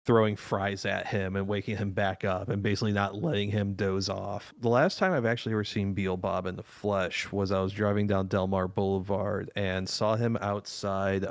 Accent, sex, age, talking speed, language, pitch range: American, male, 30-49, 205 wpm, English, 95-110 Hz